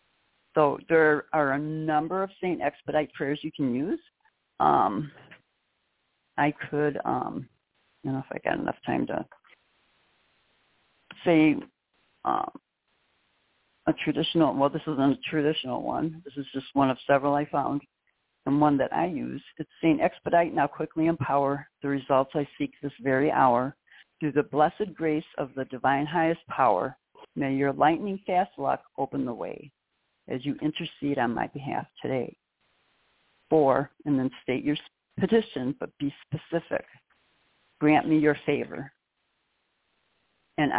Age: 60-79